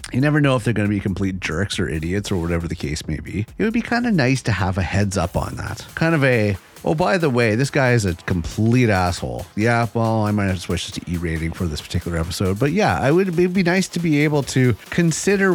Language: English